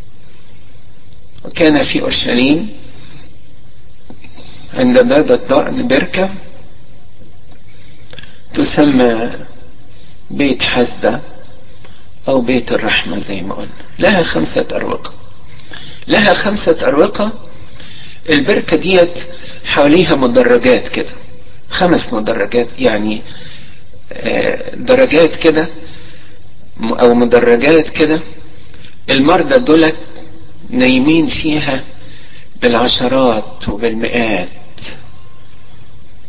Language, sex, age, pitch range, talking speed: Arabic, male, 50-69, 120-190 Hz, 70 wpm